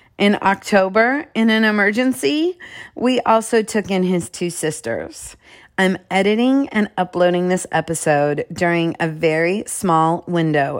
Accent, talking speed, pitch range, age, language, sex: American, 130 wpm, 170-220 Hz, 30-49, English, female